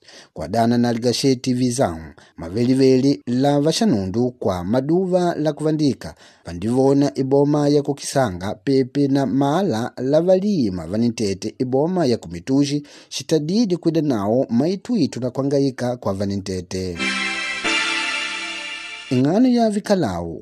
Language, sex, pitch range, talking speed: English, male, 105-155 Hz, 110 wpm